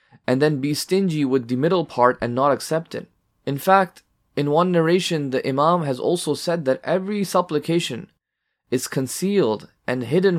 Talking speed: 170 wpm